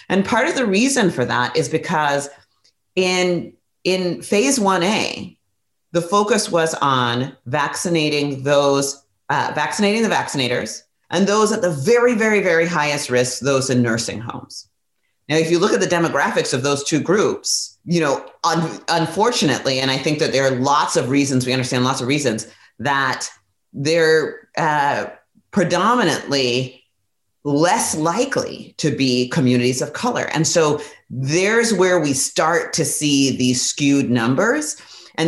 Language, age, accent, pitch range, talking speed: English, 30-49, American, 130-175 Hz, 150 wpm